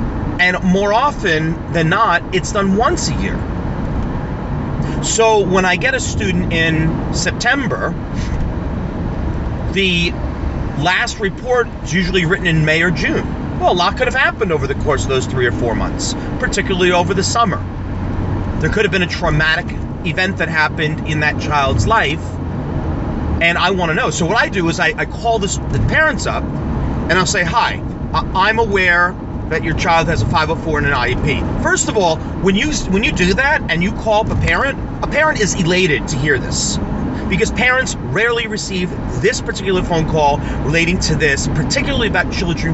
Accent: American